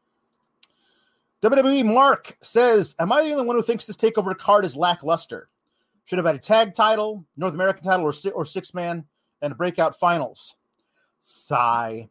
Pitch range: 155-215 Hz